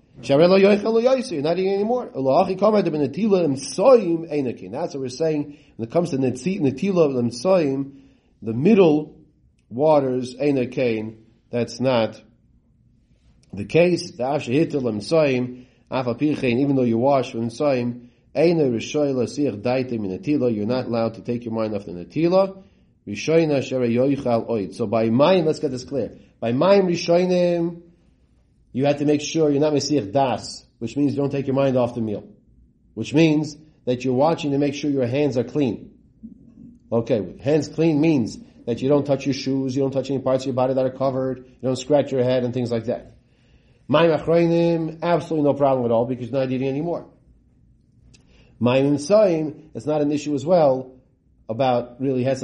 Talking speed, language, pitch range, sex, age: 140 wpm, English, 120-155 Hz, male, 40-59